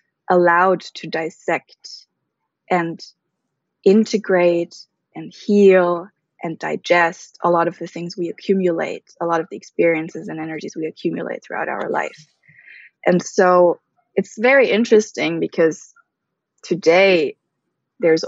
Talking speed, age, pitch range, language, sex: 120 wpm, 20-39, 170-220 Hz, English, female